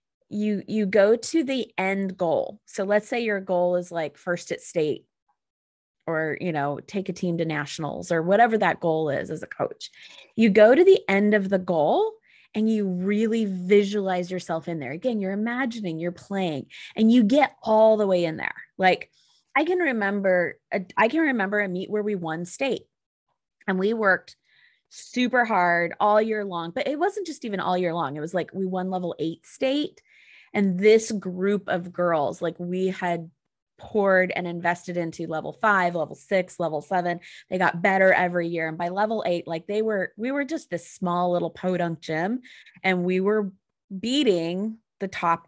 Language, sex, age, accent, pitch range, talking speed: English, female, 20-39, American, 170-215 Hz, 185 wpm